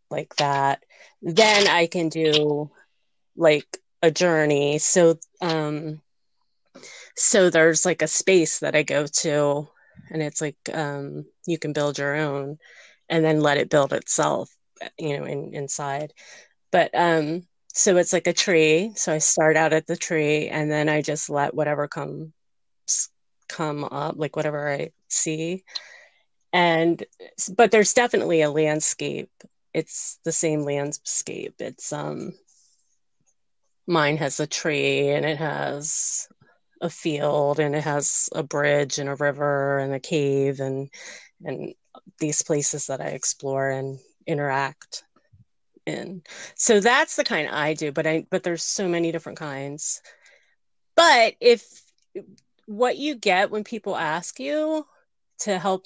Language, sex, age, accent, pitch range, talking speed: English, female, 30-49, American, 145-180 Hz, 145 wpm